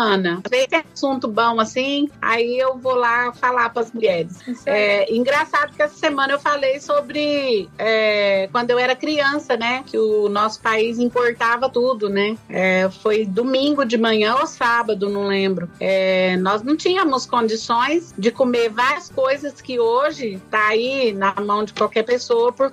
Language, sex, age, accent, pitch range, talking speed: Portuguese, female, 40-59, Brazilian, 210-260 Hz, 165 wpm